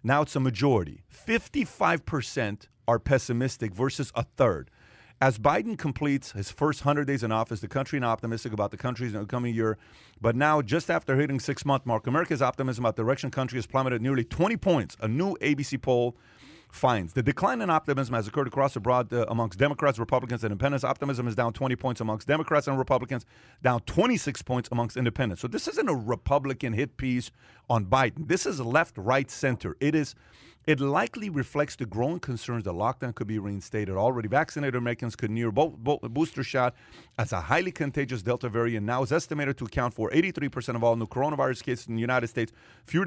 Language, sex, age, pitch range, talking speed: English, male, 40-59, 115-145 Hz, 195 wpm